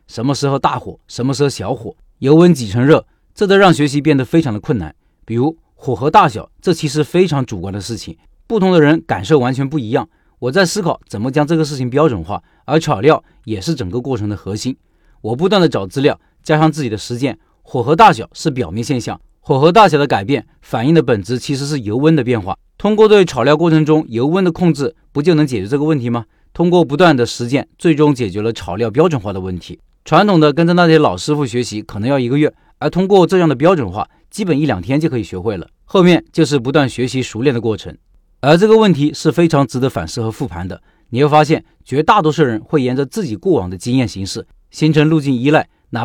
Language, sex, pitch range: Chinese, male, 115-160 Hz